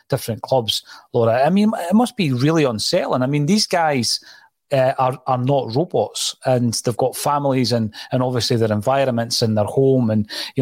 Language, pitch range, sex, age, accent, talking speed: English, 120-145 Hz, male, 30-49, British, 185 wpm